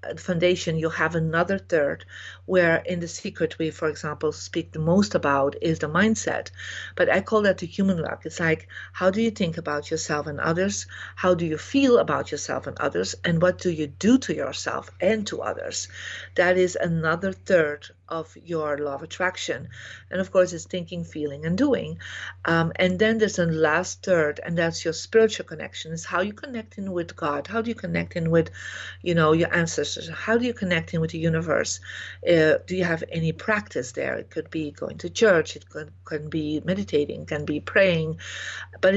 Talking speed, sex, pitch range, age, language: 200 wpm, female, 160-190 Hz, 50-69, English